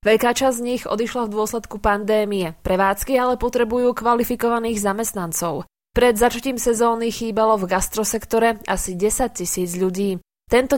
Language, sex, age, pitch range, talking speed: Slovak, female, 20-39, 200-245 Hz, 135 wpm